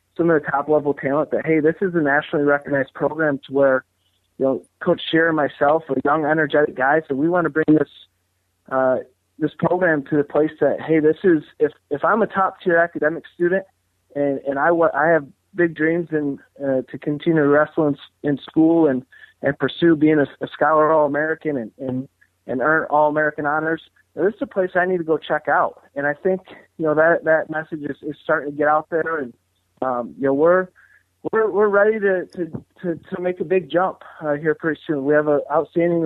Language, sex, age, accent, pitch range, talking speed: English, male, 30-49, American, 140-165 Hz, 215 wpm